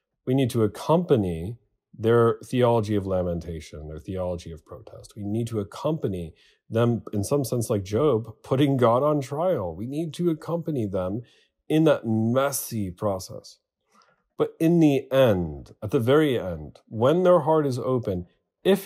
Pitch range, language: 90-135 Hz, English